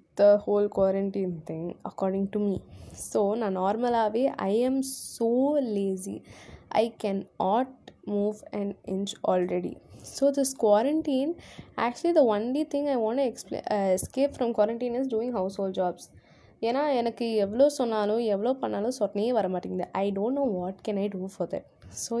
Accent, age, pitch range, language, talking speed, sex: native, 10-29, 205-245 Hz, Tamil, 160 wpm, female